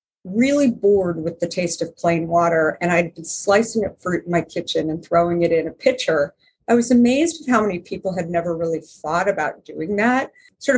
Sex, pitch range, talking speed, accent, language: female, 170-225 Hz, 210 wpm, American, English